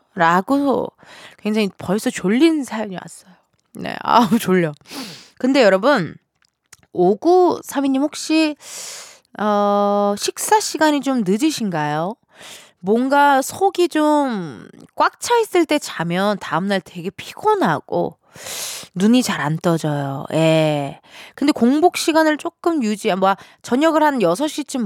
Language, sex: Korean, female